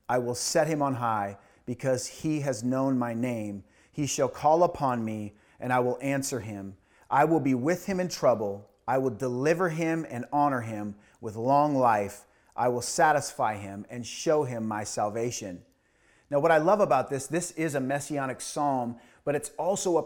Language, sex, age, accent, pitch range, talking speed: English, male, 30-49, American, 125-160 Hz, 190 wpm